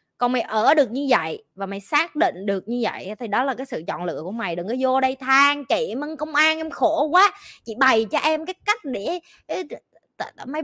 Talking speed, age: 235 wpm, 20-39